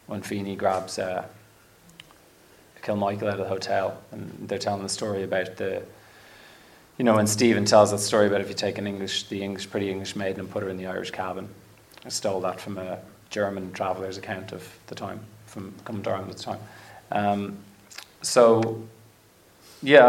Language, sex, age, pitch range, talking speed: English, male, 30-49, 100-110 Hz, 180 wpm